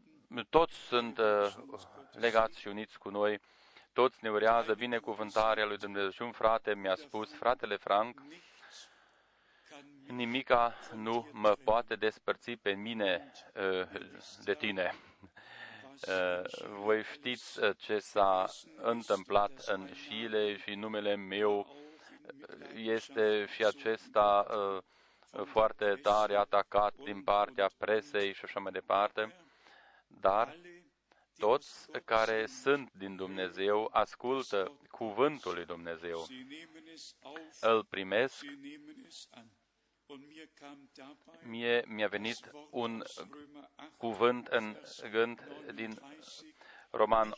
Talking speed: 100 wpm